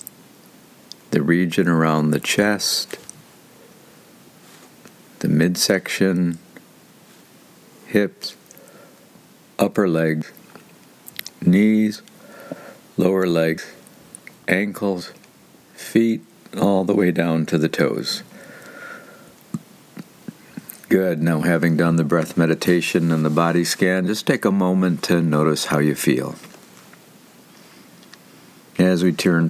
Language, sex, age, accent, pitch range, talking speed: English, male, 60-79, American, 80-95 Hz, 90 wpm